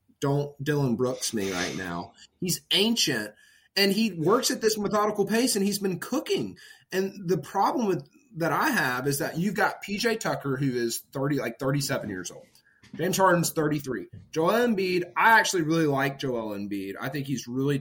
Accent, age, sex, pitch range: American, 30-49, male, 140-205 Hz